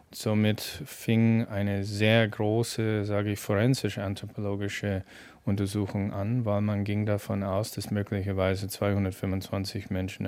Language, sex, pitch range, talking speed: German, male, 100-115 Hz, 110 wpm